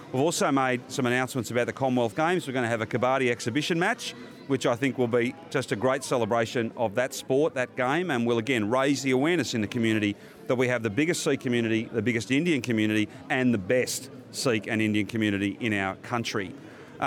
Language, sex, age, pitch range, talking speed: Punjabi, male, 40-59, 115-140 Hz, 220 wpm